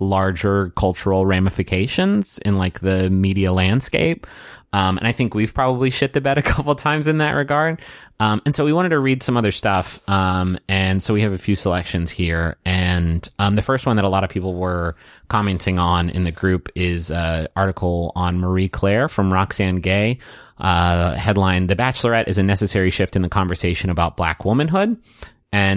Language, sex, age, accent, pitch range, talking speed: English, male, 30-49, American, 90-115 Hz, 190 wpm